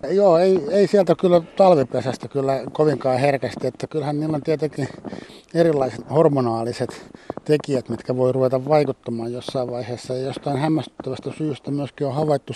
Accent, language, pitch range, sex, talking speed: native, Finnish, 130-165 Hz, male, 145 wpm